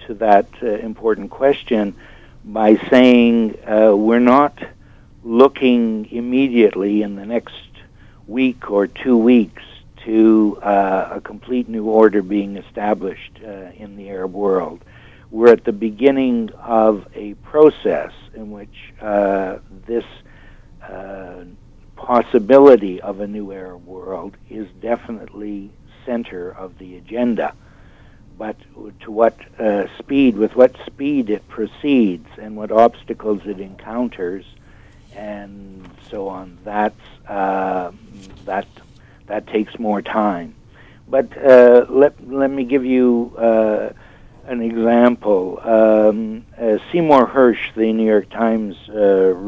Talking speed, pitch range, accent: 120 wpm, 100-120 Hz, American